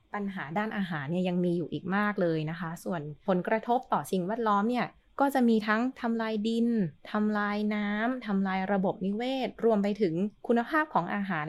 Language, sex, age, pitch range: Thai, female, 20-39, 175-225 Hz